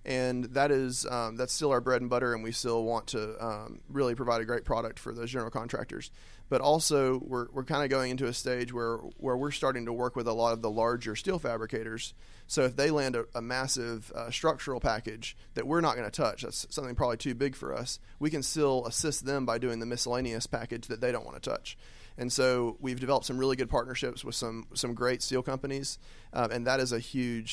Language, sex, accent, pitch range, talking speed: English, male, American, 115-130 Hz, 235 wpm